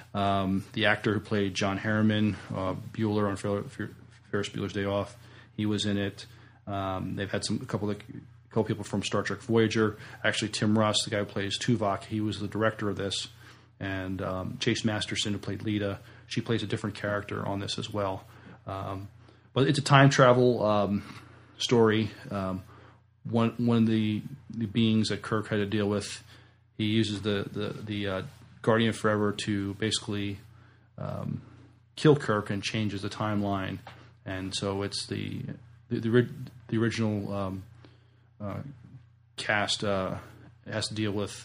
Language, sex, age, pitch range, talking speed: English, male, 30-49, 100-115 Hz, 170 wpm